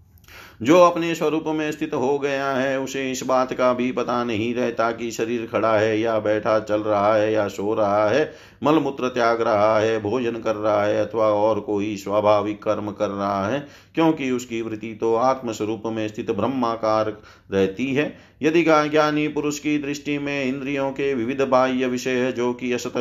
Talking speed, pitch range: 185 wpm, 110-130 Hz